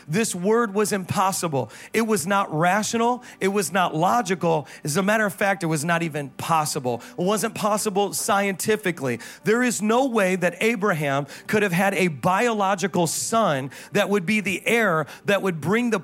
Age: 40-59